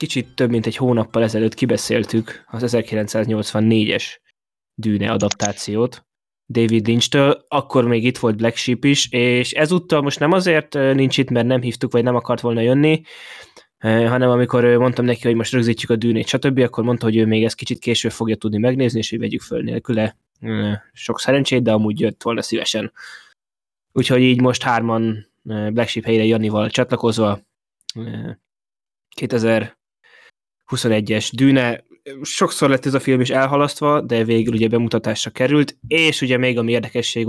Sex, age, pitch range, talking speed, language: male, 20-39, 115-125 Hz, 155 wpm, Hungarian